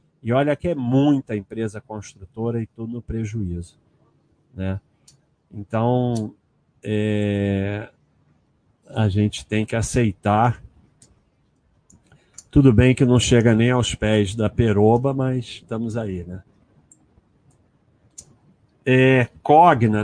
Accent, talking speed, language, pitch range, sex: Brazilian, 100 wpm, Portuguese, 105-130 Hz, male